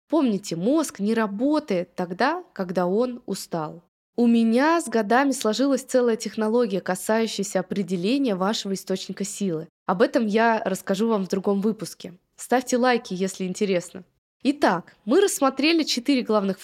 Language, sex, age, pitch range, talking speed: Russian, female, 20-39, 190-260 Hz, 135 wpm